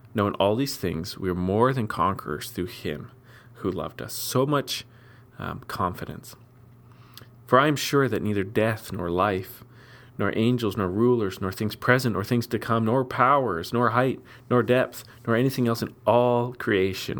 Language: English